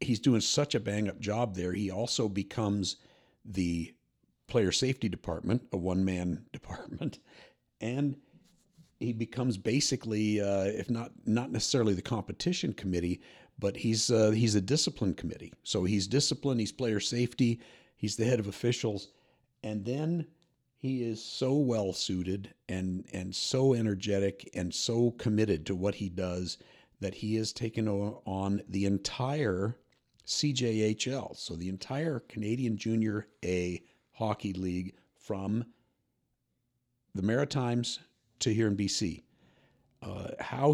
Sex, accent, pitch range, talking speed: male, American, 95-120 Hz, 135 wpm